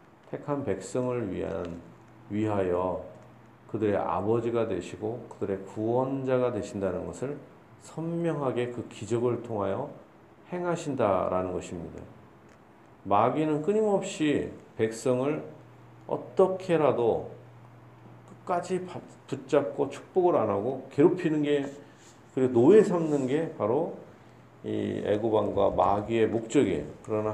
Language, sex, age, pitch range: Korean, male, 40-59, 105-140 Hz